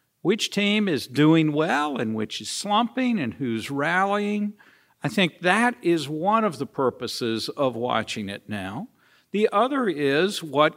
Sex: male